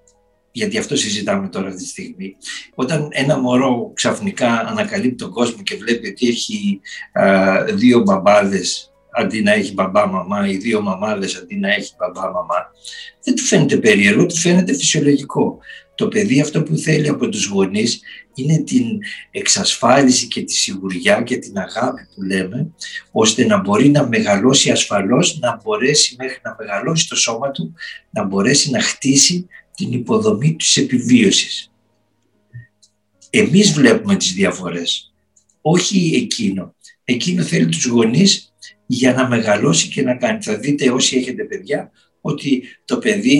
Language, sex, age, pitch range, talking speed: Greek, male, 50-69, 125-215 Hz, 145 wpm